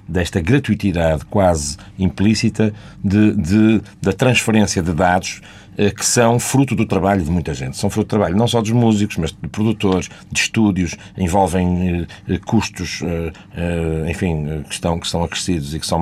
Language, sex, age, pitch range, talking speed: Portuguese, male, 50-69, 90-115 Hz, 170 wpm